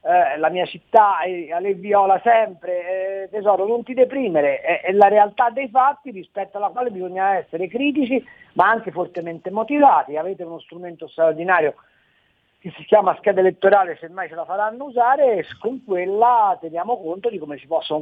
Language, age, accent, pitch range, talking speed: Italian, 50-69, native, 165-215 Hz, 170 wpm